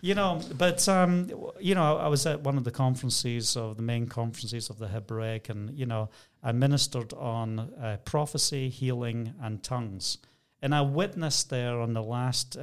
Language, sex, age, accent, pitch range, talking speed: English, male, 40-59, British, 125-160 Hz, 180 wpm